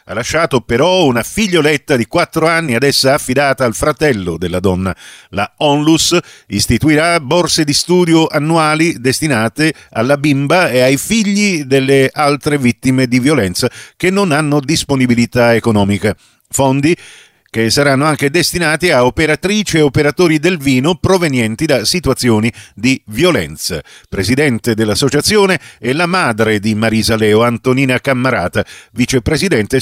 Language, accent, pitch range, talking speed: Italian, native, 115-155 Hz, 130 wpm